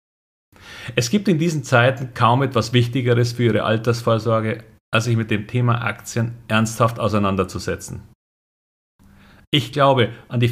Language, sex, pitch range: German, male, 95-120 Hz